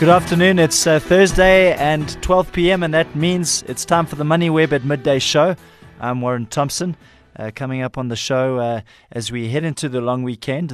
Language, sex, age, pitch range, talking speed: English, male, 20-39, 115-135 Hz, 200 wpm